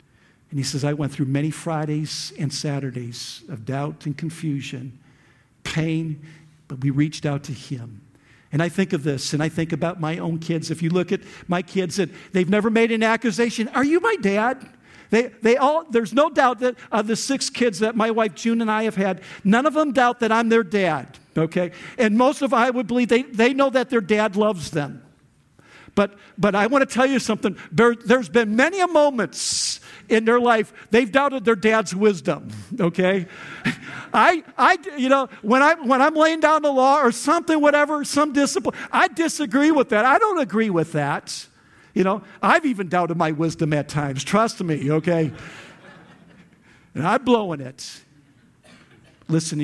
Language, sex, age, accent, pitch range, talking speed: English, male, 50-69, American, 155-240 Hz, 190 wpm